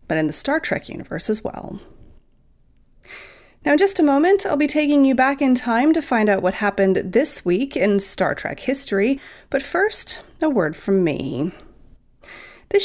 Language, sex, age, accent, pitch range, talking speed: English, female, 30-49, American, 185-290 Hz, 175 wpm